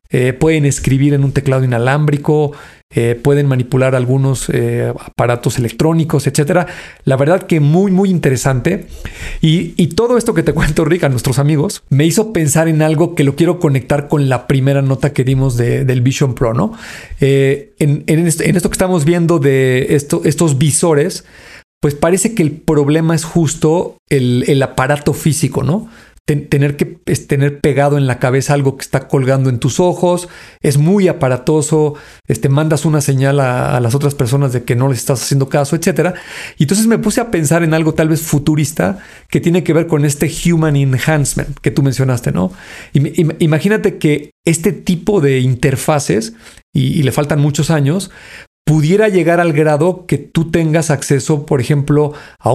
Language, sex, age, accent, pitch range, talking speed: Spanish, male, 40-59, Mexican, 140-165 Hz, 175 wpm